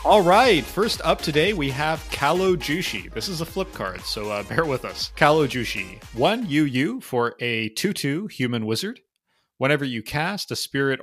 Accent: American